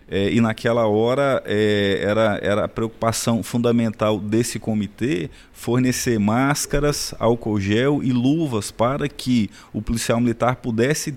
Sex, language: male, Portuguese